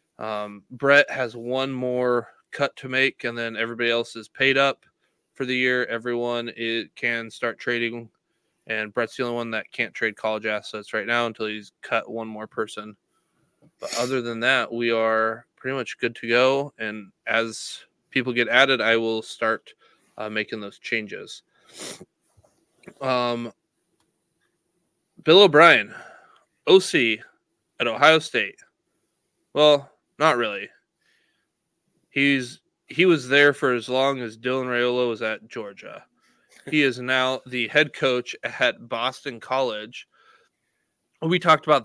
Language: English